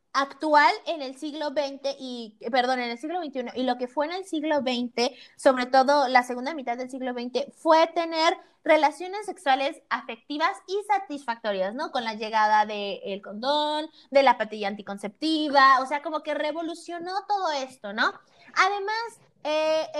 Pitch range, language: 240-310 Hz, Spanish